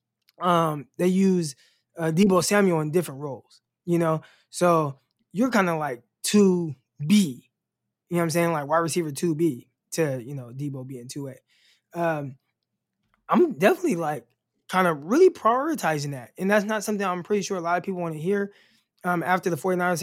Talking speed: 175 wpm